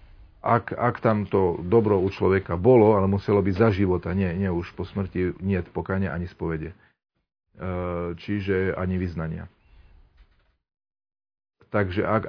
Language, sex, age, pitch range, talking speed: Slovak, male, 40-59, 90-105 Hz, 130 wpm